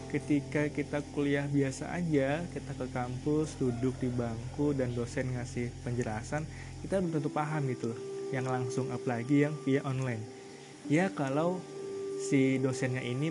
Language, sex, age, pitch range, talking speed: Indonesian, male, 20-39, 130-145 Hz, 135 wpm